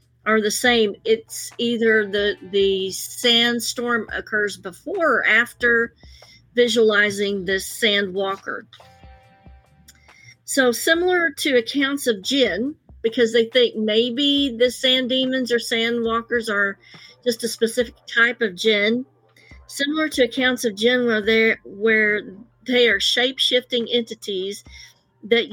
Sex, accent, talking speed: female, American, 120 wpm